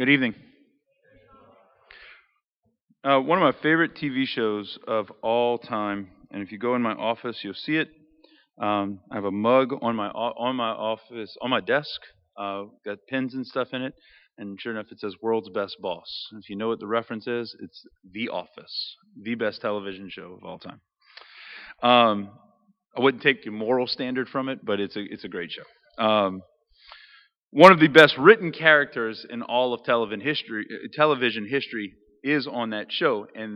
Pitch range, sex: 105-140 Hz, male